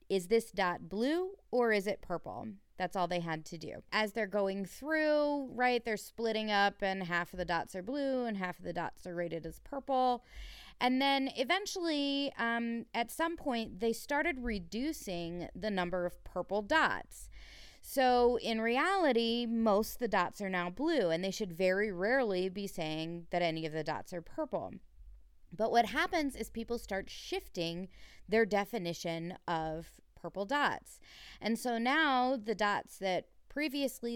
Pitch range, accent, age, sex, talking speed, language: 185-265 Hz, American, 30-49, female, 165 wpm, English